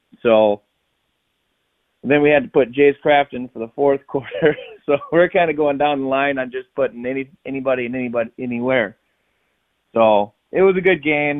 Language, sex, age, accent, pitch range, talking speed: English, male, 30-49, American, 110-135 Hz, 180 wpm